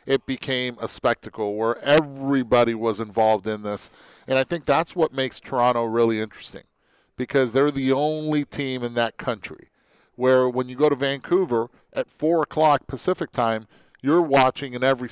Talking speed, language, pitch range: 165 wpm, English, 115-140 Hz